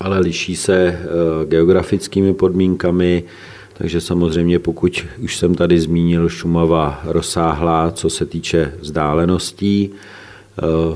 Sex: male